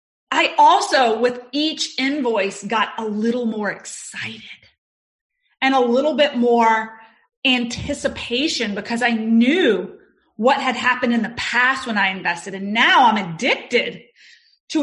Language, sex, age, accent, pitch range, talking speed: English, female, 30-49, American, 225-295 Hz, 135 wpm